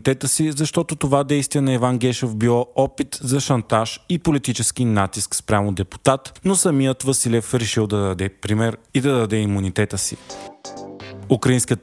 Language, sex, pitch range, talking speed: Bulgarian, male, 110-135 Hz, 145 wpm